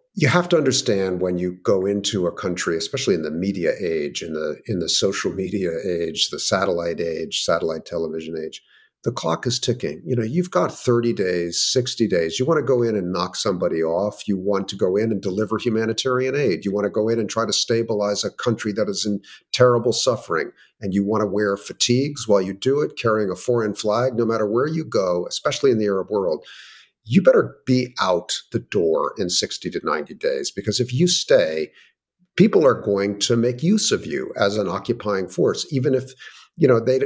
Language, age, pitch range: English, 50-69, 95-130 Hz